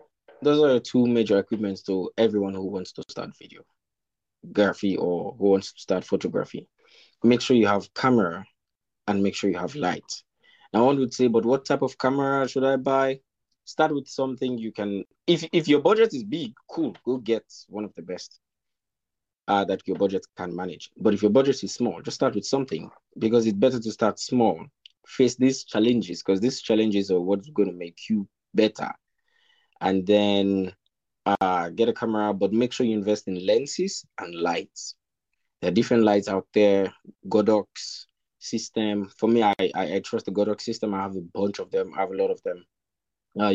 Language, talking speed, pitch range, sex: English, 195 wpm, 95-125 Hz, male